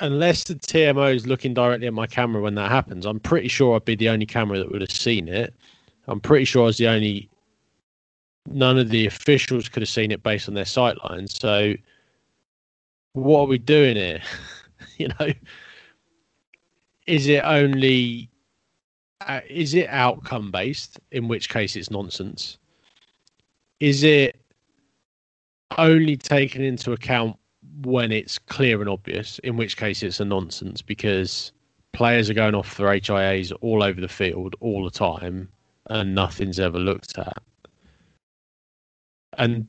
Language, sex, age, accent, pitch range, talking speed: English, male, 20-39, British, 100-130 Hz, 155 wpm